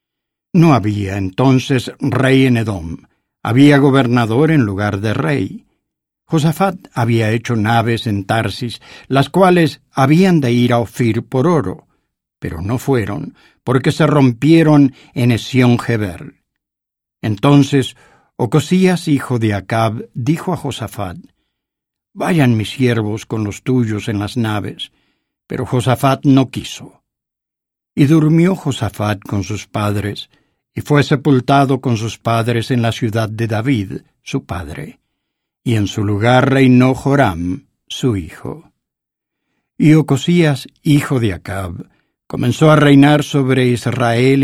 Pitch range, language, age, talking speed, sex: 110-140 Hz, English, 60-79, 125 wpm, male